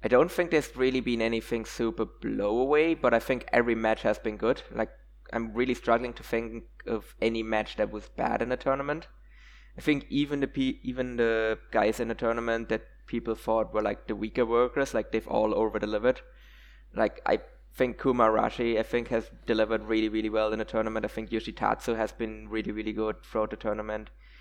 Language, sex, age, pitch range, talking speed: English, male, 20-39, 110-125 Hz, 200 wpm